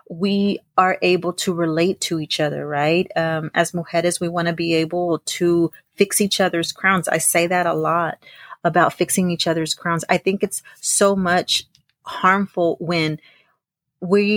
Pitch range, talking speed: 165-190 Hz, 165 wpm